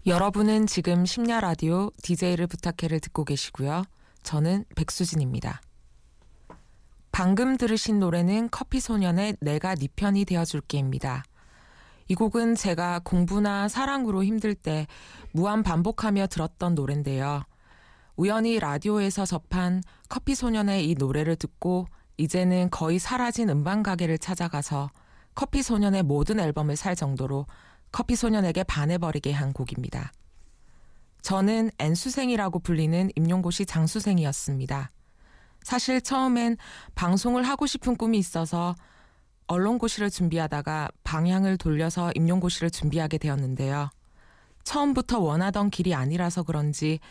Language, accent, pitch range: Korean, native, 155-205 Hz